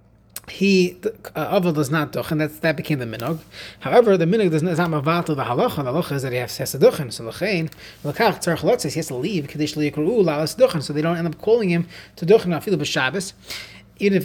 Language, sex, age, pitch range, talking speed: English, male, 30-49, 130-170 Hz, 205 wpm